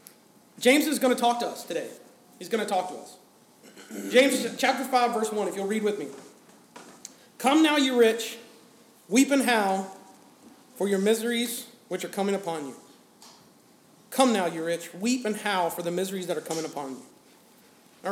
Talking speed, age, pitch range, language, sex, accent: 180 wpm, 40-59, 185-245 Hz, English, male, American